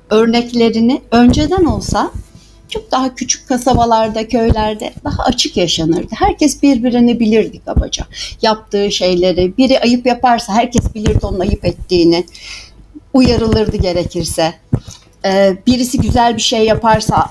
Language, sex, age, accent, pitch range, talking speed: Turkish, female, 60-79, native, 205-265 Hz, 110 wpm